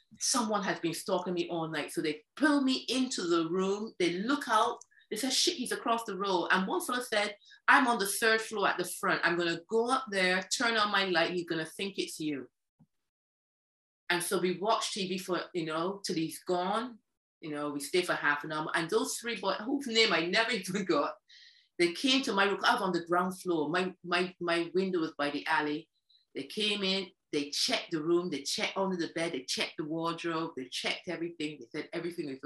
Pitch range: 170-250 Hz